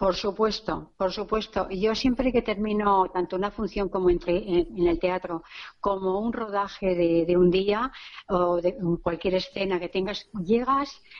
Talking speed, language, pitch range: 155 wpm, Spanish, 190-240 Hz